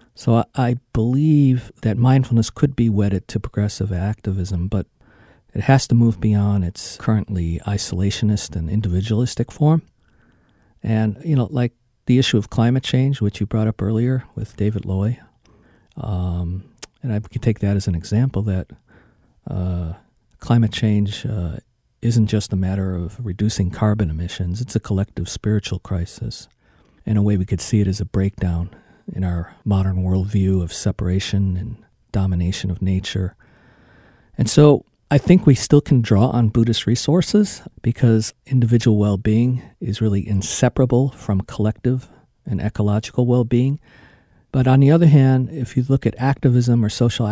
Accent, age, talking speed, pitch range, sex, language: American, 50-69, 155 wpm, 95-120 Hz, male, English